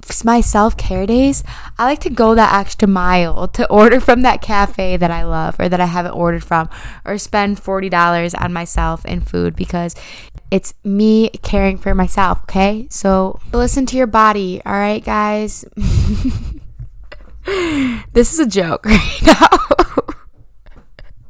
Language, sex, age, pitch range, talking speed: English, female, 20-39, 185-220 Hz, 145 wpm